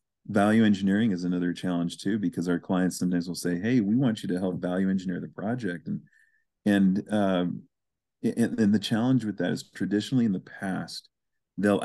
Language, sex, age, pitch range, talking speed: English, male, 40-59, 90-105 Hz, 185 wpm